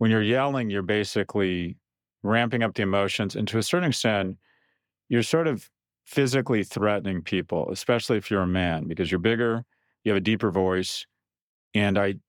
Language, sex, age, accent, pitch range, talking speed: English, male, 40-59, American, 95-115 Hz, 170 wpm